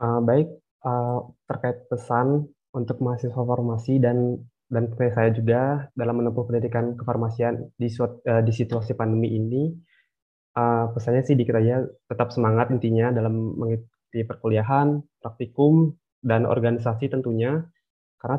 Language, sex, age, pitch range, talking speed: Indonesian, male, 20-39, 115-130 Hz, 125 wpm